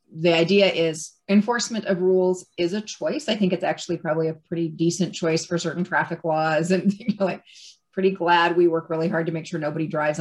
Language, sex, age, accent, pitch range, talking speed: English, female, 30-49, American, 165-200 Hz, 215 wpm